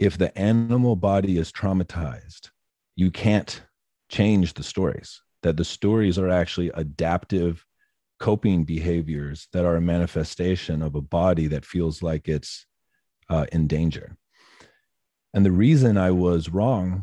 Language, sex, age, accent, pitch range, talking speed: English, male, 40-59, American, 80-100 Hz, 135 wpm